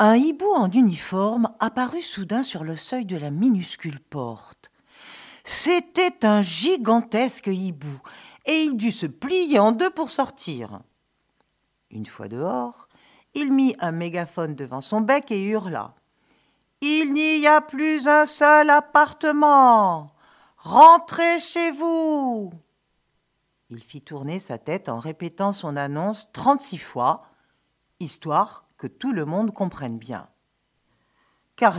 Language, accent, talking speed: French, French, 125 wpm